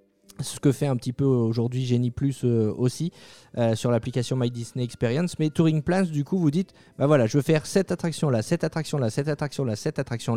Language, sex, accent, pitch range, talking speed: French, male, French, 125-170 Hz, 225 wpm